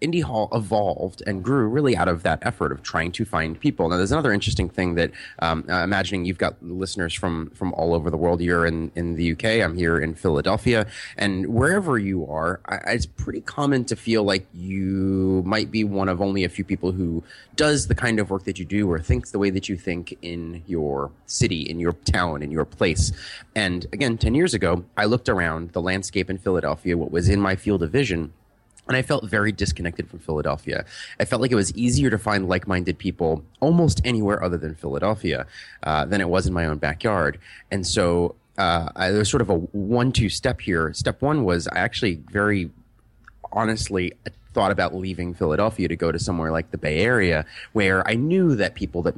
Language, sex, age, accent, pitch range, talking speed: English, male, 30-49, American, 85-110 Hz, 210 wpm